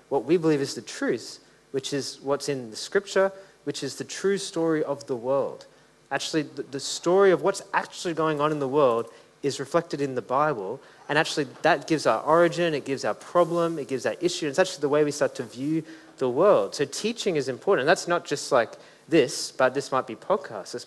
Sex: male